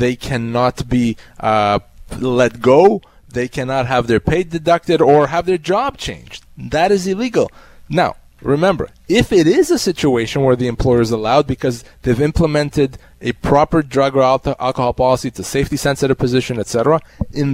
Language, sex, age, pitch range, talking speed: English, male, 20-39, 120-150 Hz, 160 wpm